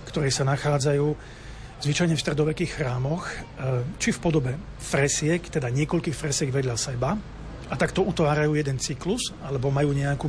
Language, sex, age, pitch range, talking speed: Slovak, male, 40-59, 135-165 Hz, 140 wpm